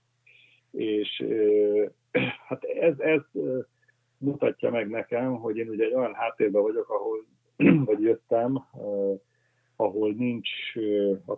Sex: male